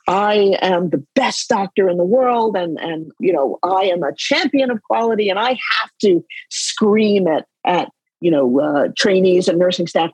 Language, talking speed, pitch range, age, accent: English, 190 wpm, 180-265 Hz, 50-69, American